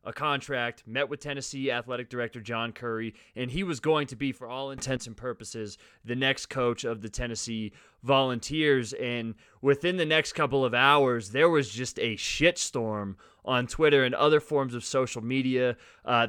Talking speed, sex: 175 wpm, male